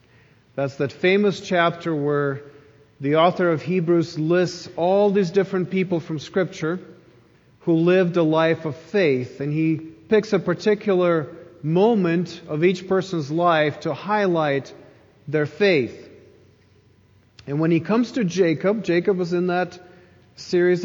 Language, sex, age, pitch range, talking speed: English, male, 40-59, 150-190 Hz, 135 wpm